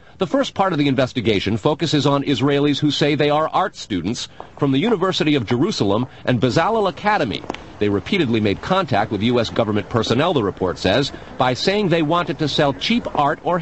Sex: male